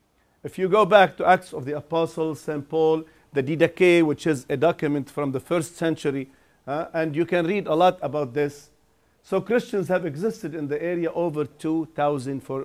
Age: 50-69